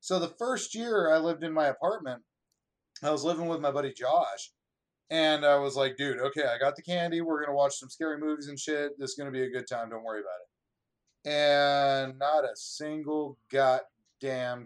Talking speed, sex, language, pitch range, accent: 215 wpm, male, English, 130-175 Hz, American